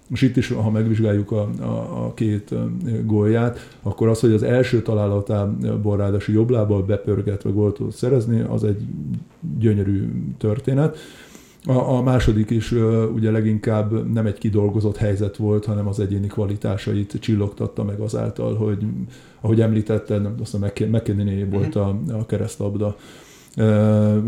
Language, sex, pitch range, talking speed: Hungarian, male, 105-120 Hz, 135 wpm